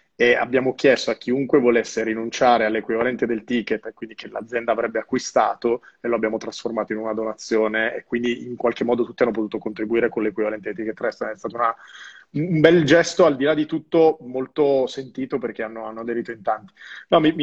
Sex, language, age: male, Italian, 30-49